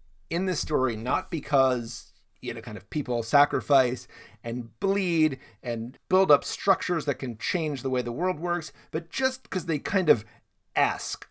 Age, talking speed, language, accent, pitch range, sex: 40-59, 170 wpm, English, American, 115-155 Hz, male